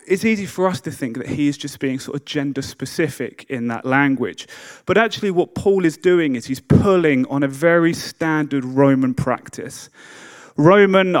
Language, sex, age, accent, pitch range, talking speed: English, male, 30-49, British, 135-170 Hz, 180 wpm